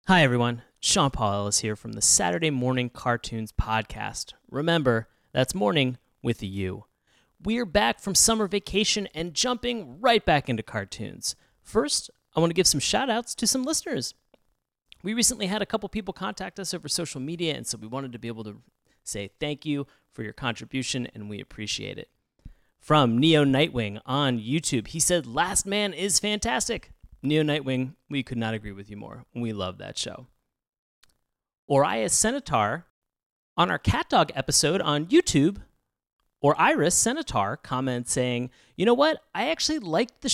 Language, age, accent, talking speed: English, 30-49, American, 170 wpm